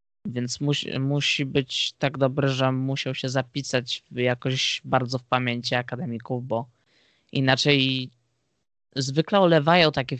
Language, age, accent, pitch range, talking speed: Polish, 20-39, native, 125-145 Hz, 120 wpm